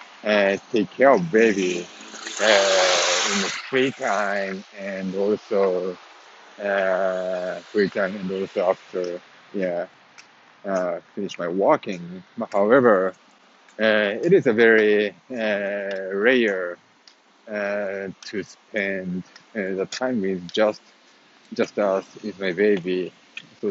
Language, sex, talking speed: English, male, 115 wpm